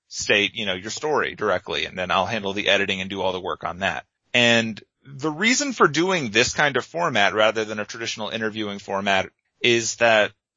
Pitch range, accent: 100-125 Hz, American